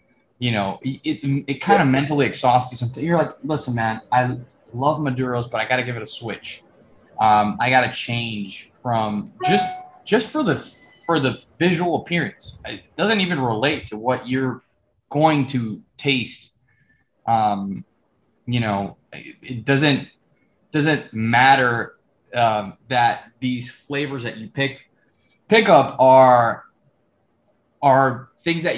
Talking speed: 145 wpm